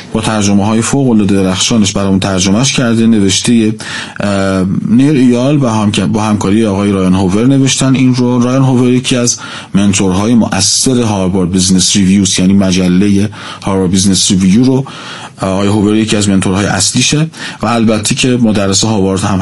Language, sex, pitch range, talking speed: Persian, male, 100-135 Hz, 150 wpm